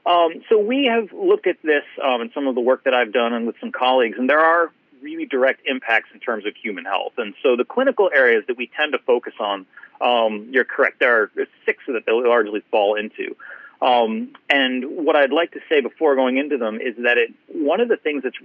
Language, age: English, 40-59